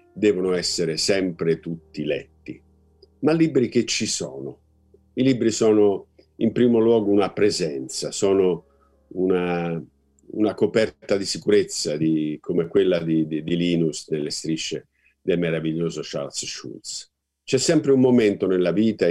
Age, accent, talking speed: 50-69, native, 135 wpm